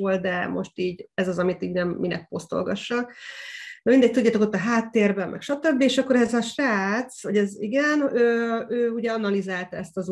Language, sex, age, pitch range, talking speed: Hungarian, female, 30-49, 195-250 Hz, 195 wpm